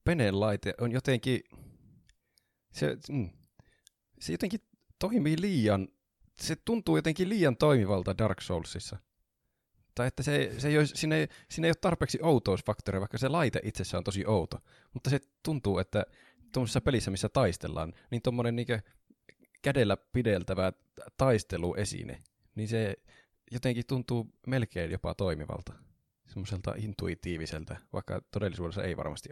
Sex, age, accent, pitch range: male, 20-39, native, 95-125 Hz